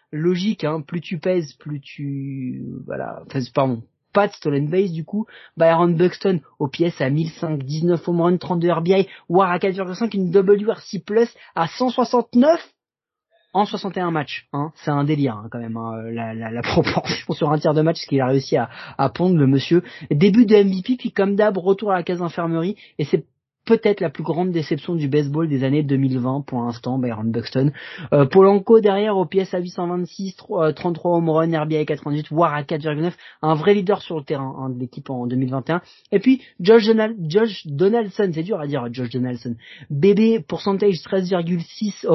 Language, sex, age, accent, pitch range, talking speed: French, male, 30-49, French, 145-195 Hz, 185 wpm